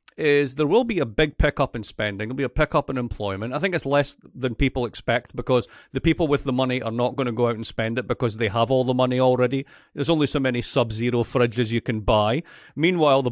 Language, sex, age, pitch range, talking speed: English, male, 40-59, 125-165 Hz, 250 wpm